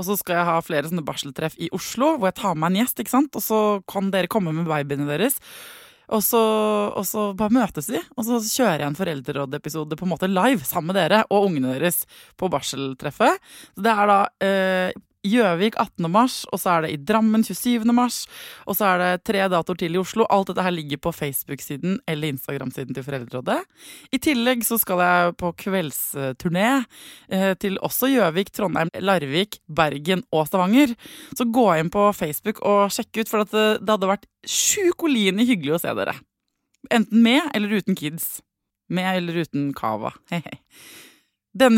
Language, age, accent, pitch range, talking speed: English, 20-39, Swedish, 165-225 Hz, 190 wpm